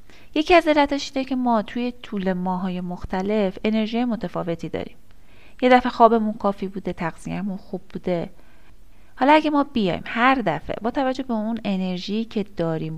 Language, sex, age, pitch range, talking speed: Persian, female, 30-49, 180-240 Hz, 155 wpm